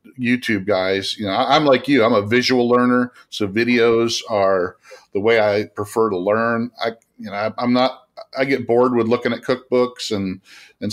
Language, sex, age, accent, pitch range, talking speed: English, male, 40-59, American, 100-120 Hz, 185 wpm